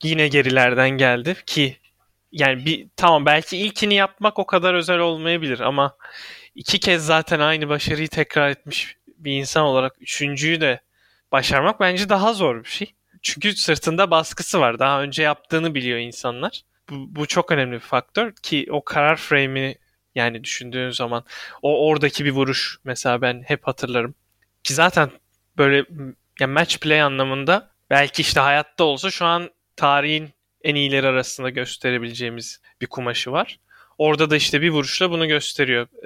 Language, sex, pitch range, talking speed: Turkish, male, 130-160 Hz, 150 wpm